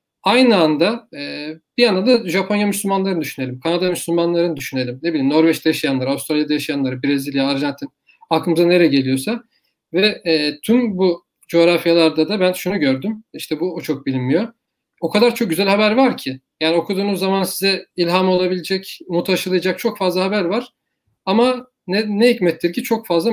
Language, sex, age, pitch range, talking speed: Turkish, male, 40-59, 160-205 Hz, 155 wpm